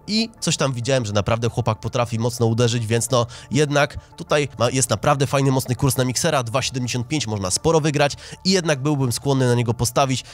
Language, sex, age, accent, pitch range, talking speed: Polish, male, 20-39, native, 120-145 Hz, 185 wpm